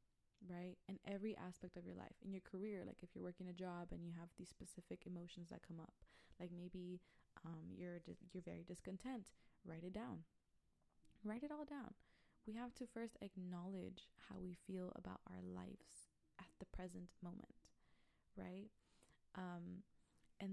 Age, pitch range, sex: 20-39, 175-195 Hz, female